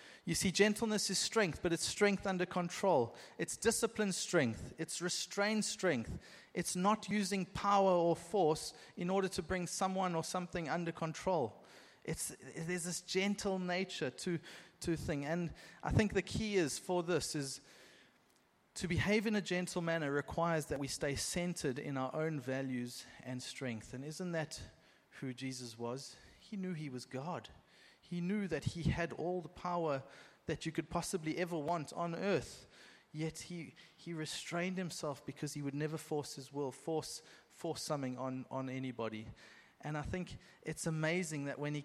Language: English